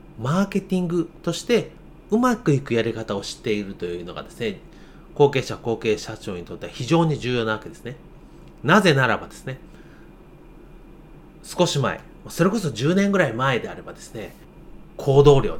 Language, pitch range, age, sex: Japanese, 130-195 Hz, 30-49, male